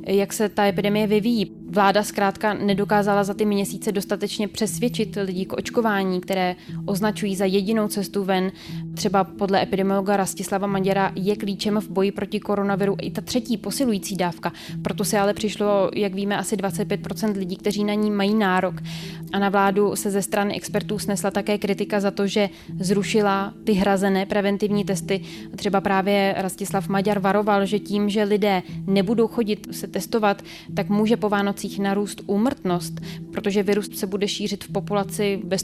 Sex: female